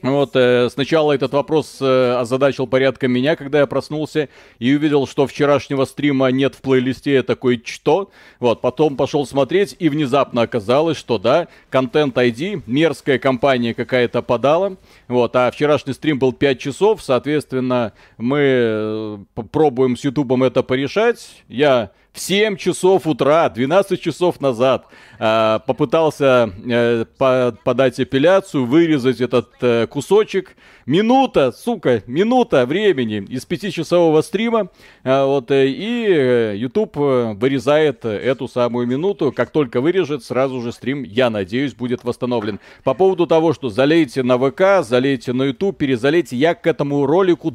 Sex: male